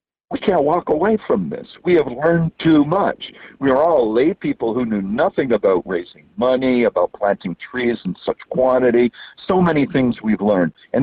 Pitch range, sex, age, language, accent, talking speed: 115-165 Hz, male, 60-79, English, American, 185 wpm